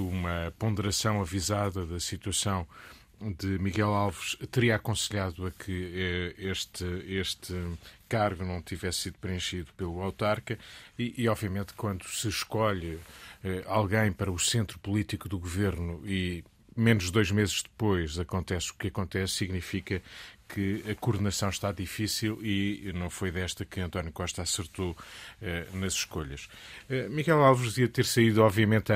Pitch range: 90-105 Hz